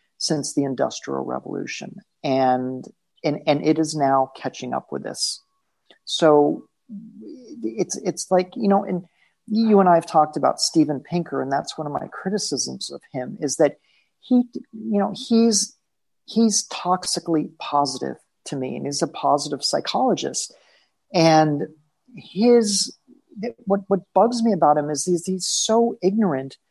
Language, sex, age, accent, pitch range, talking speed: English, male, 40-59, American, 150-195 Hz, 150 wpm